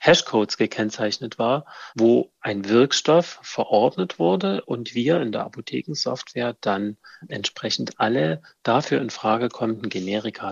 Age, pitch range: 40-59, 105-130 Hz